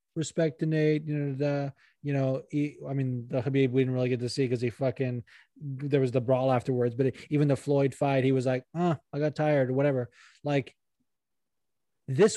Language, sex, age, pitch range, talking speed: English, male, 20-39, 130-155 Hz, 215 wpm